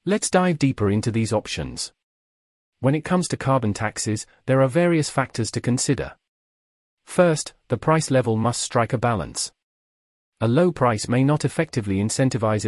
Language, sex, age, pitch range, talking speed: English, male, 40-59, 110-145 Hz, 155 wpm